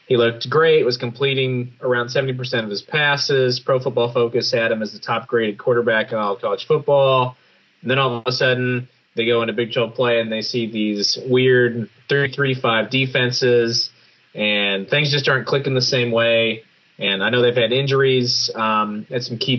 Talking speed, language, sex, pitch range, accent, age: 180 wpm, English, male, 115-130 Hz, American, 20-39